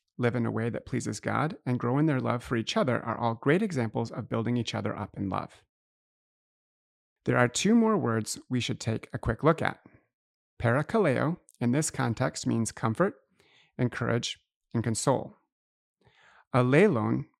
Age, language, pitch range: 30-49, English, 115-140 Hz